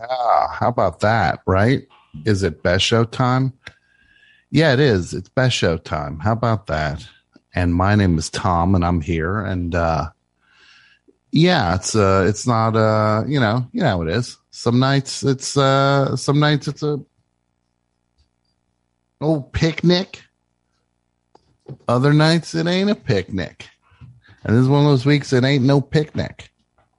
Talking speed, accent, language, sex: 155 wpm, American, English, male